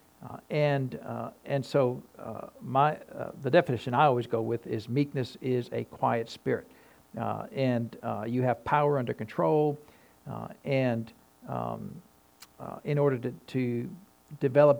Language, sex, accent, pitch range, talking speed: English, male, American, 120-150 Hz, 150 wpm